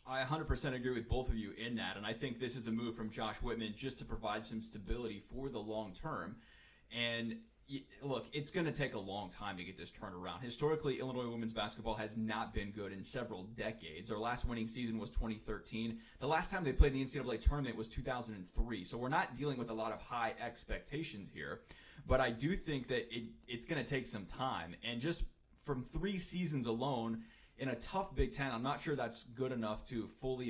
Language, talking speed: English, 215 wpm